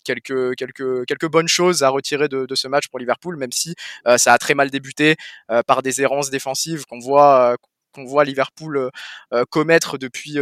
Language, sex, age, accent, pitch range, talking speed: French, male, 20-39, French, 125-145 Hz, 190 wpm